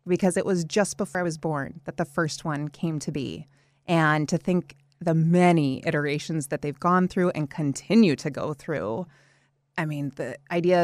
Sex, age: female, 30-49